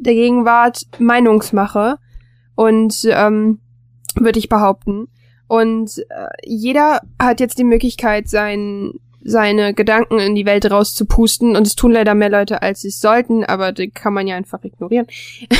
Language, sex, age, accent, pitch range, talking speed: German, female, 10-29, German, 210-240 Hz, 150 wpm